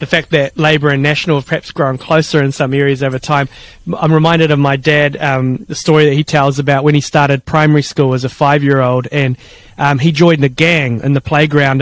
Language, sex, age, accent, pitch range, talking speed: English, male, 30-49, Australian, 140-165 Hz, 225 wpm